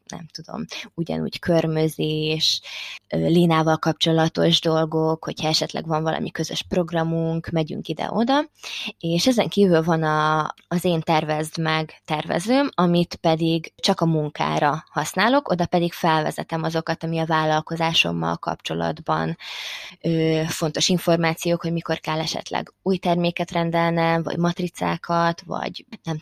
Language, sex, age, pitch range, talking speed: Hungarian, female, 20-39, 160-180 Hz, 120 wpm